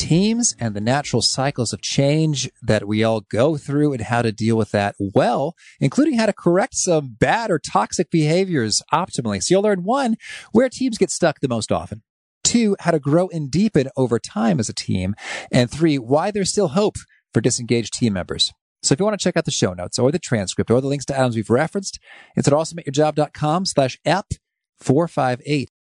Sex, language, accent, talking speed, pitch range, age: male, English, American, 200 wpm, 115-185 Hz, 40-59